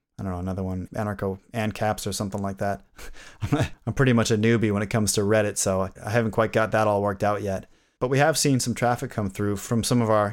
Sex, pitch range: male, 105-125 Hz